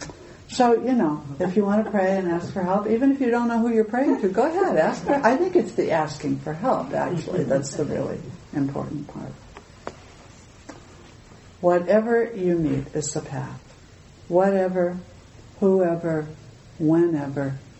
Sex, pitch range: female, 135-180 Hz